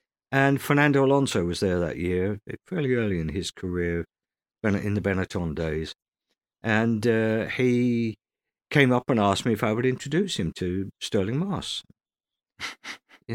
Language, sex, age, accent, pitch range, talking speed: English, male, 50-69, British, 95-130 Hz, 150 wpm